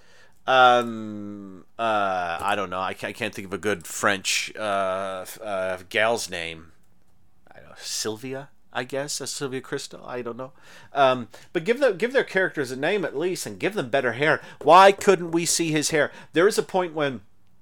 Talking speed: 185 wpm